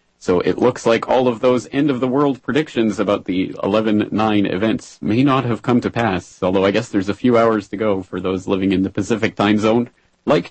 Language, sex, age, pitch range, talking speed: English, male, 30-49, 95-115 Hz, 215 wpm